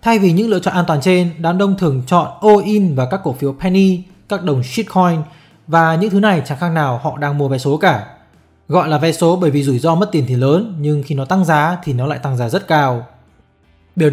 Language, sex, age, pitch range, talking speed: Vietnamese, male, 20-39, 140-180 Hz, 250 wpm